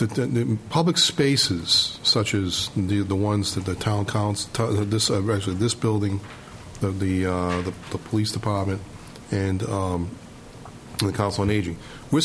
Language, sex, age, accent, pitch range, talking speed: English, male, 40-59, American, 100-115 Hz, 135 wpm